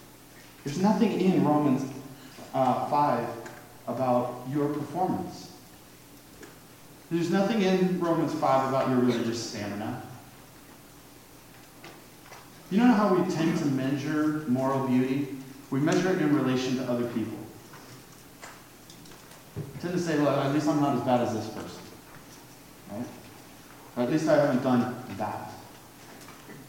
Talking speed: 130 wpm